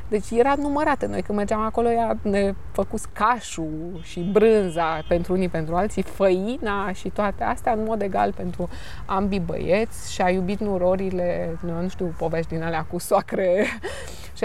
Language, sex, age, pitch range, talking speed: Romanian, female, 20-39, 175-205 Hz, 160 wpm